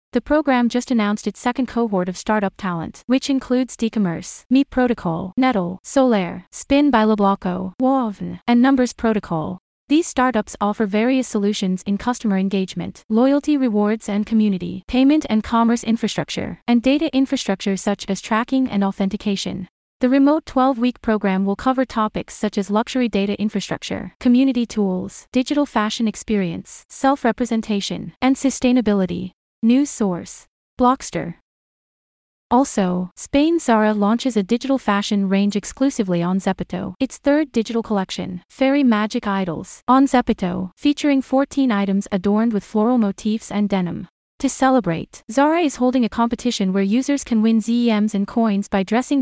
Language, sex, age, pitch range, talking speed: English, female, 30-49, 195-255 Hz, 140 wpm